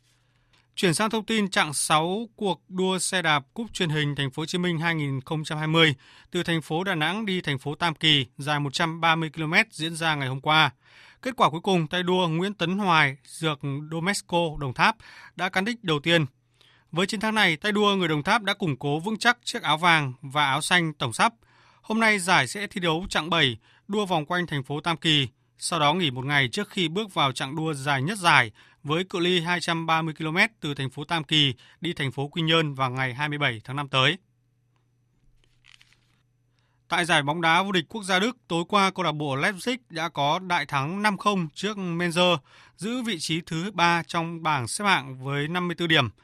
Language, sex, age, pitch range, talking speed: Vietnamese, male, 20-39, 145-185 Hz, 210 wpm